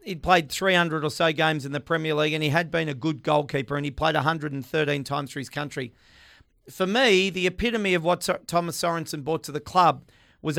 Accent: Australian